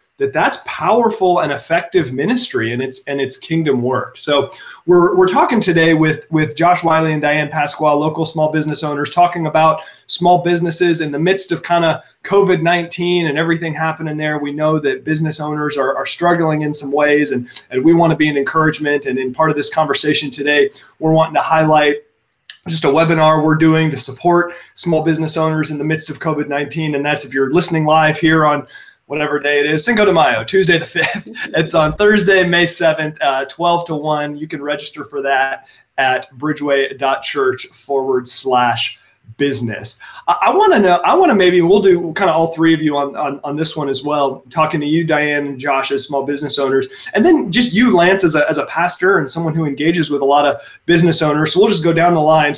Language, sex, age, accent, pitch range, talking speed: English, male, 30-49, American, 145-170 Hz, 210 wpm